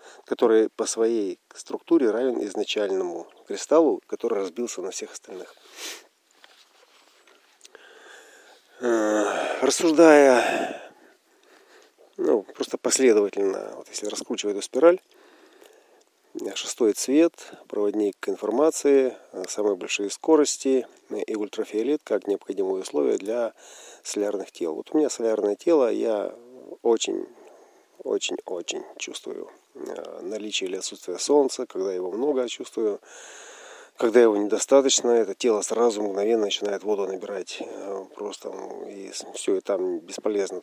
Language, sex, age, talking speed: Russian, male, 40-59, 100 wpm